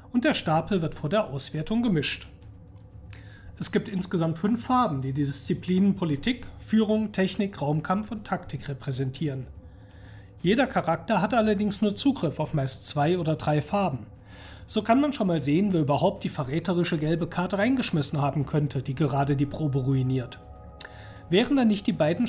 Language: German